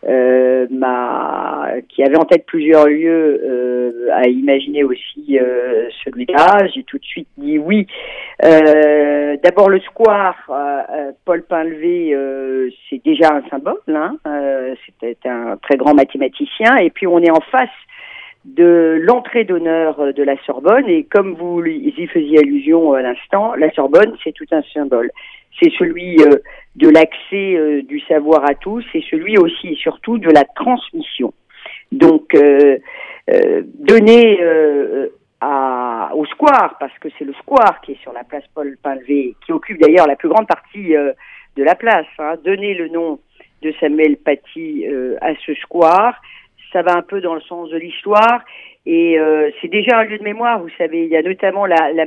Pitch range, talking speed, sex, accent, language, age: 145-220 Hz, 170 wpm, female, French, Italian, 40-59